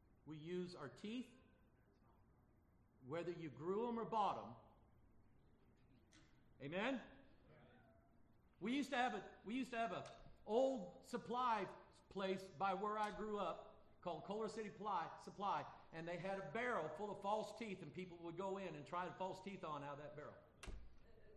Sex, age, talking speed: male, 50-69, 165 wpm